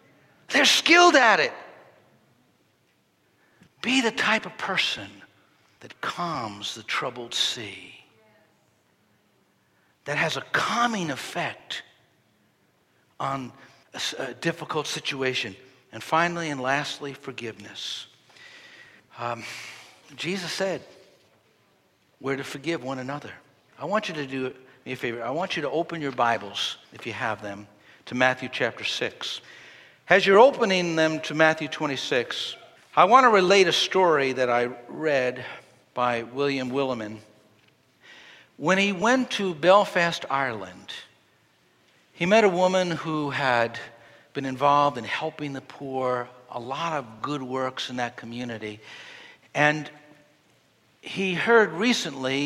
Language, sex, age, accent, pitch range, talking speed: English, male, 60-79, American, 125-165 Hz, 120 wpm